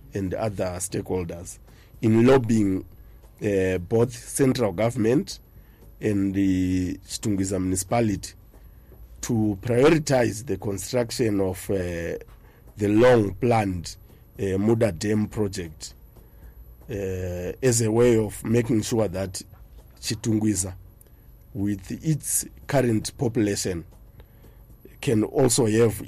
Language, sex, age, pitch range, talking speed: English, male, 50-69, 95-115 Hz, 95 wpm